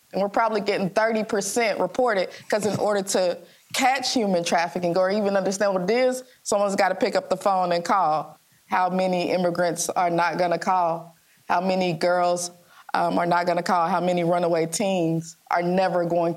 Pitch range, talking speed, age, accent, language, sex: 175-215 Hz, 195 wpm, 20-39, American, English, female